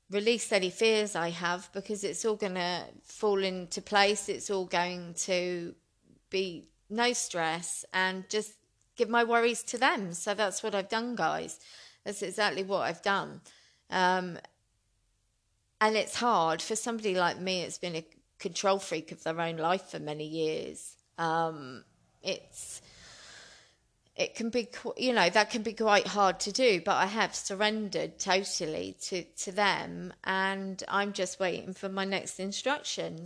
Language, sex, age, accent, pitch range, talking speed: English, female, 30-49, British, 175-210 Hz, 155 wpm